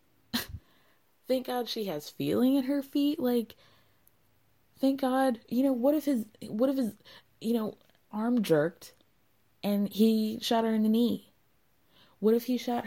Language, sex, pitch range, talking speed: English, female, 170-235 Hz, 160 wpm